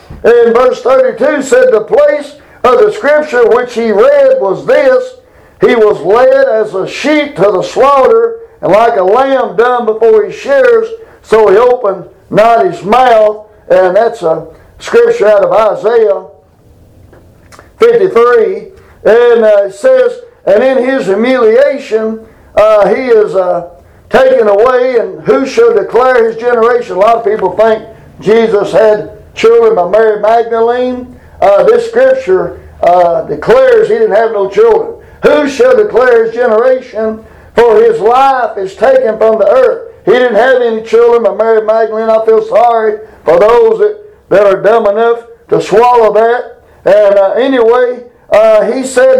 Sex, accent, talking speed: male, American, 155 wpm